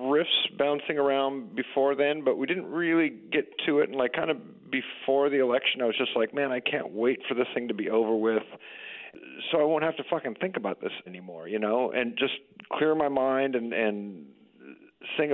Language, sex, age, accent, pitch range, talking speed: English, male, 40-59, American, 110-150 Hz, 210 wpm